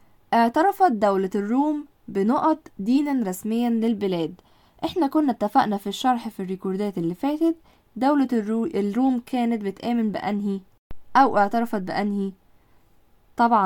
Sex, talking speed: female, 110 wpm